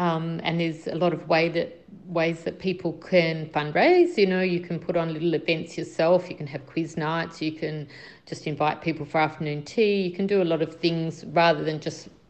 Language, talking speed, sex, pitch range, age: Dutch, 220 wpm, female, 160-195 Hz, 50-69